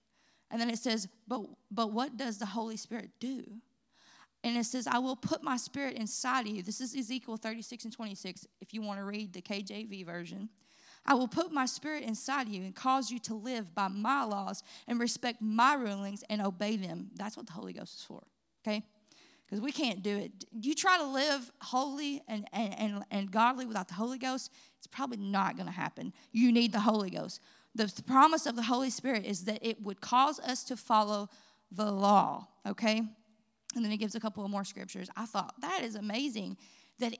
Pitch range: 210-265 Hz